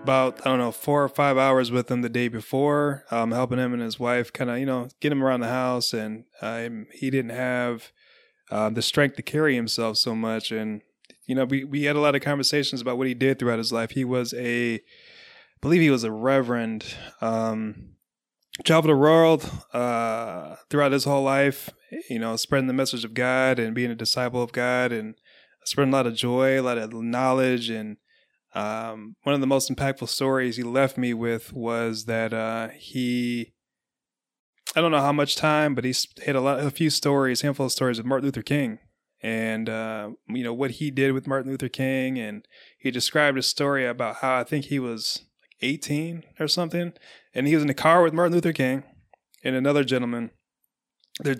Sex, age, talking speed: male, 20-39, 205 wpm